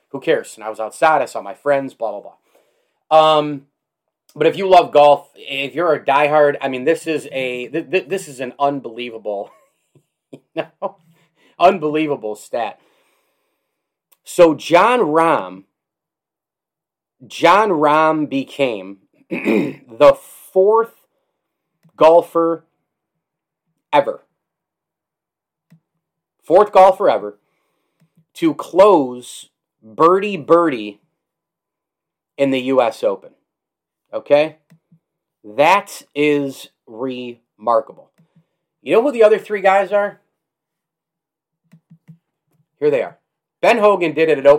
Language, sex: English, male